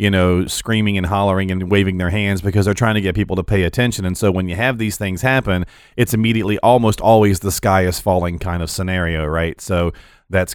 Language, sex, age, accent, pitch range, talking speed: English, male, 40-59, American, 90-120 Hz, 230 wpm